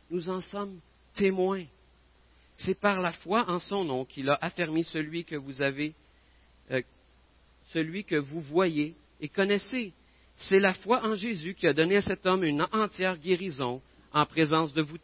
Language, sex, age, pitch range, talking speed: French, male, 50-69, 120-180 Hz, 170 wpm